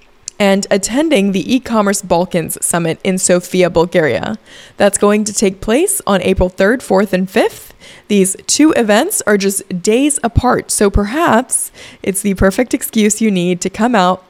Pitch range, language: 185-230 Hz, English